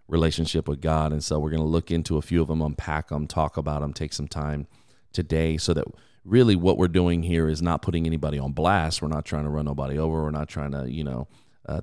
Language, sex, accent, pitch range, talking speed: English, male, American, 75-95 Hz, 255 wpm